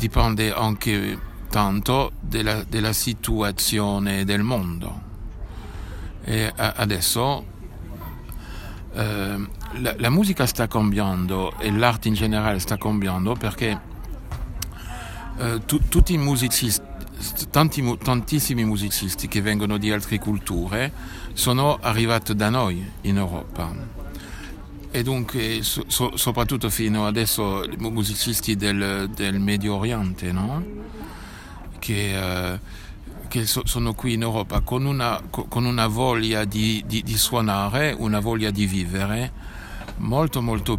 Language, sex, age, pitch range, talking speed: Italian, male, 60-79, 95-115 Hz, 115 wpm